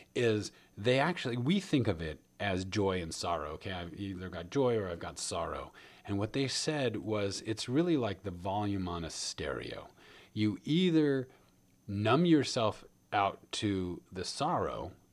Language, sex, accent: English, male, American